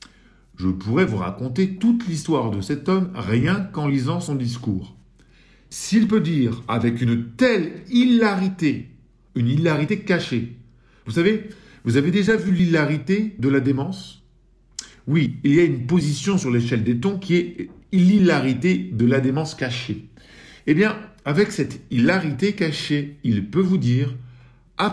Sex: male